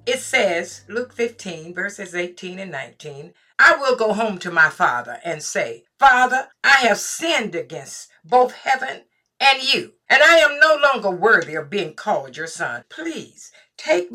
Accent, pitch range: American, 190-275 Hz